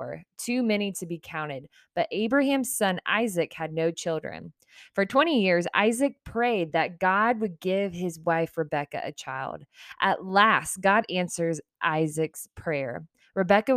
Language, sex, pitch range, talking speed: English, female, 160-205 Hz, 145 wpm